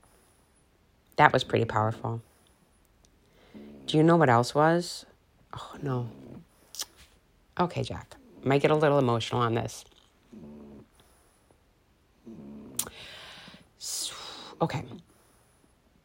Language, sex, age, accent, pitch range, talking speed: English, female, 30-49, American, 115-145 Hz, 80 wpm